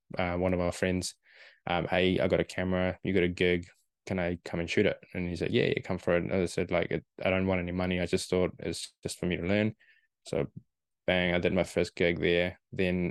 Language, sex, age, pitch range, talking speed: English, male, 10-29, 85-95 Hz, 260 wpm